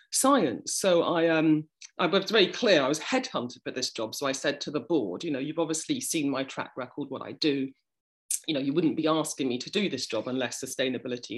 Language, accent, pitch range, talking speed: English, British, 130-180 Hz, 225 wpm